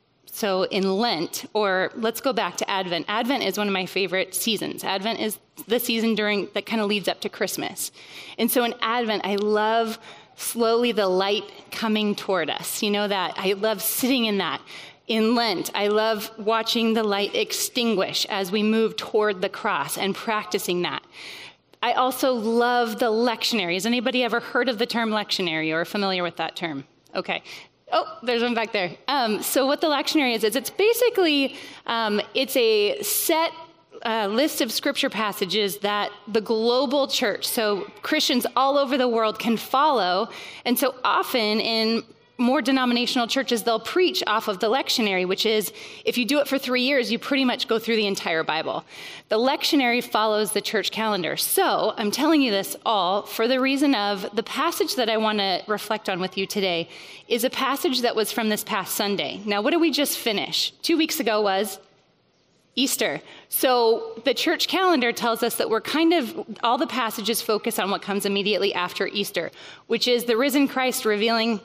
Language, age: English, 30-49